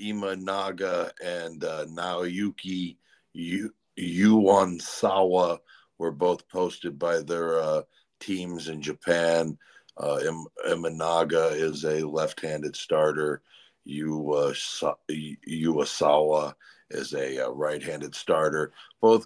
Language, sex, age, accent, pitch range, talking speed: English, male, 50-69, American, 85-100 Hz, 95 wpm